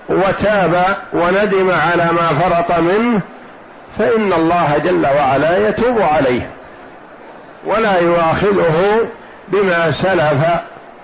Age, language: 50-69, Arabic